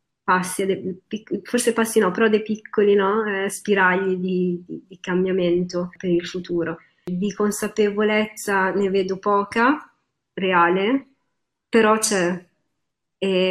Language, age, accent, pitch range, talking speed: Italian, 20-39, native, 180-205 Hz, 105 wpm